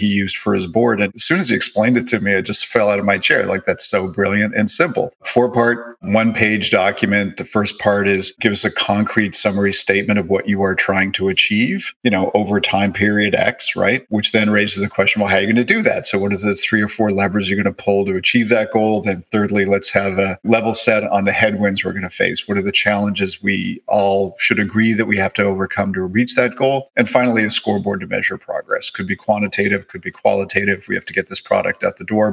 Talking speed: 250 wpm